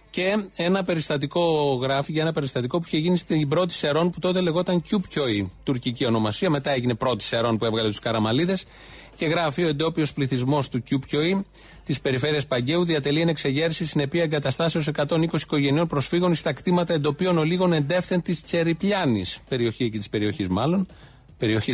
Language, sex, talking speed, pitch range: Greek, male, 160 wpm, 130-175 Hz